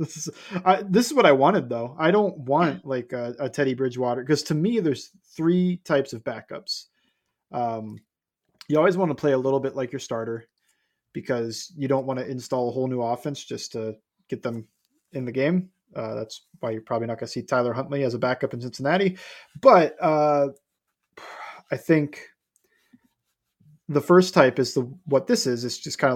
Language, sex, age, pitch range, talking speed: English, male, 20-39, 130-170 Hz, 195 wpm